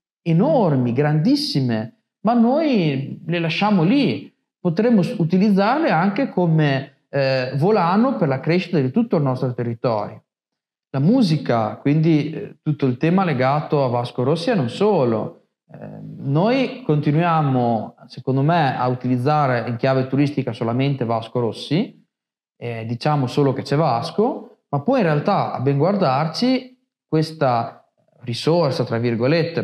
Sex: male